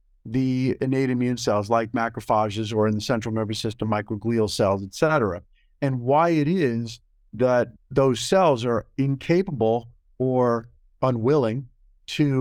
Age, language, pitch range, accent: 50-69, English, 110-135 Hz, American